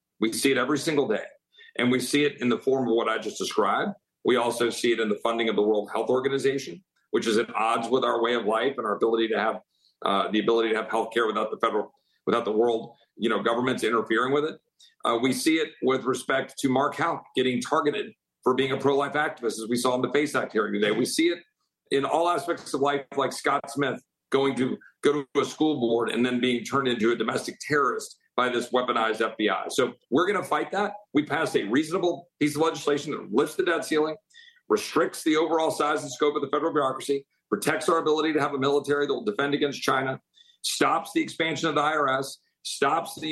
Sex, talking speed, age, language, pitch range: male, 230 wpm, 50-69, English, 120-155 Hz